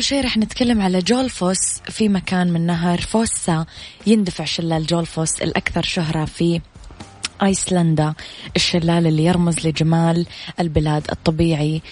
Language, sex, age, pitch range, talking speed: English, female, 20-39, 160-185 Hz, 115 wpm